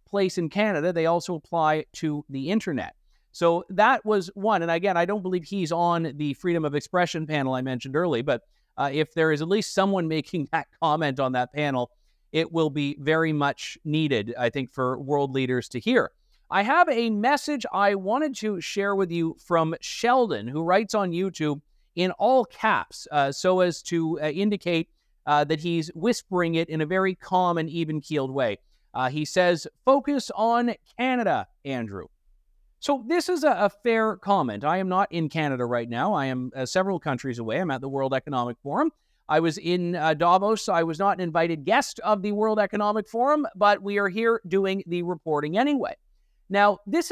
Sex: male